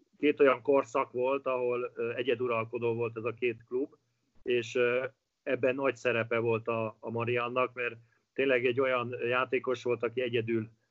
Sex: male